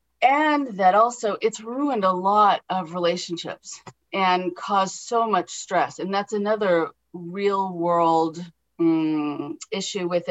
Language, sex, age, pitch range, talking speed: English, female, 30-49, 175-220 Hz, 130 wpm